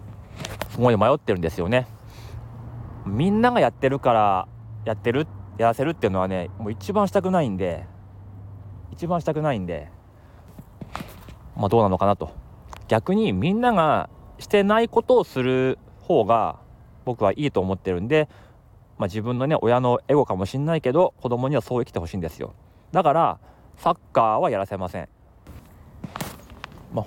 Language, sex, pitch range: Japanese, male, 95-140 Hz